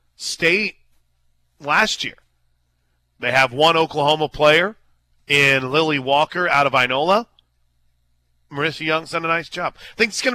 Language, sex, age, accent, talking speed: English, male, 40-59, American, 140 wpm